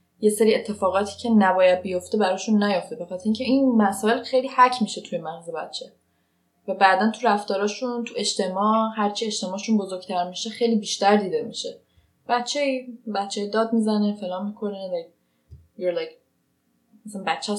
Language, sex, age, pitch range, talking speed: Persian, female, 10-29, 190-250 Hz, 135 wpm